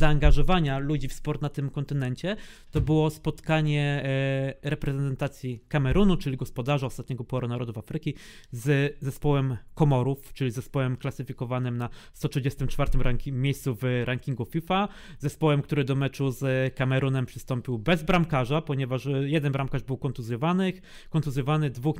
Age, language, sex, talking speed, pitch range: 20-39, Polish, male, 130 wpm, 135-165 Hz